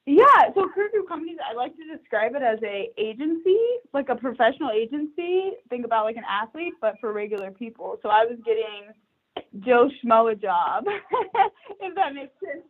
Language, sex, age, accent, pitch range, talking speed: English, female, 20-39, American, 210-275 Hz, 180 wpm